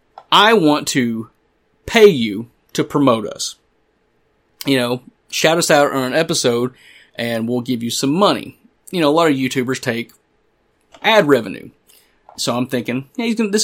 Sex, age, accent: male, 30-49, American